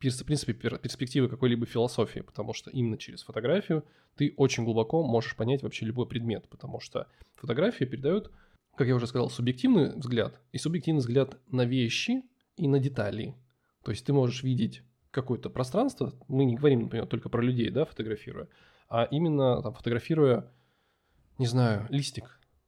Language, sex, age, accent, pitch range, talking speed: Russian, male, 20-39, native, 120-140 Hz, 155 wpm